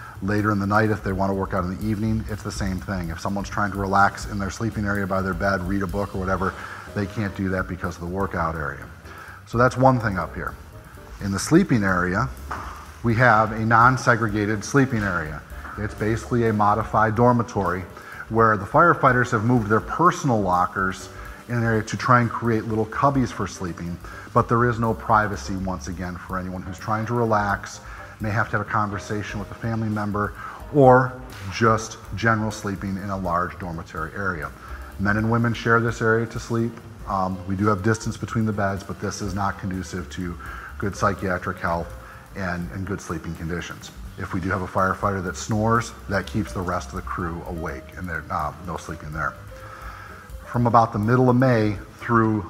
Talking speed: 200 wpm